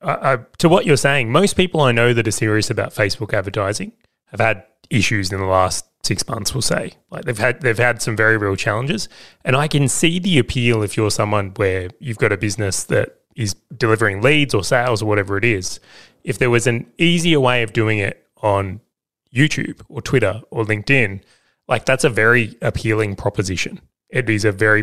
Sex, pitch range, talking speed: male, 100-125 Hz, 200 wpm